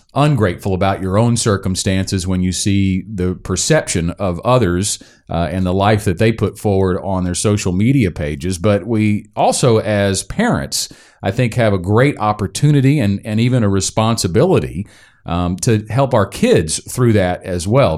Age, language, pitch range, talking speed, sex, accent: 40-59, English, 95-120 Hz, 165 wpm, male, American